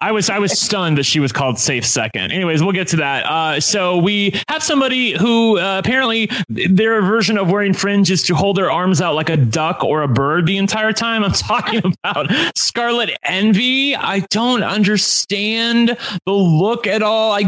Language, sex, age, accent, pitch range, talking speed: English, male, 30-49, American, 155-210 Hz, 195 wpm